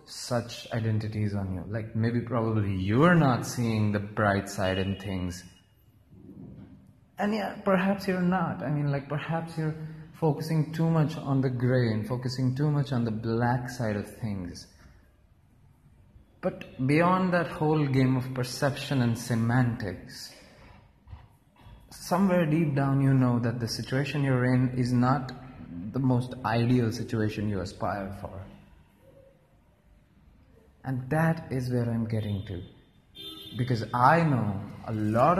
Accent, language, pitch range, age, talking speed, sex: Indian, English, 105-140 Hz, 30-49, 135 wpm, male